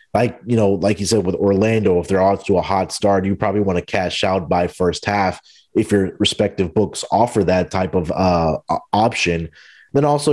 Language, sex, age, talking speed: English, male, 30-49, 210 wpm